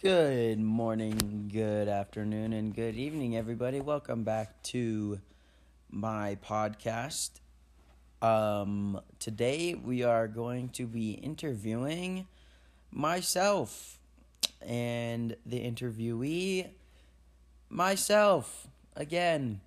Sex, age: male, 30-49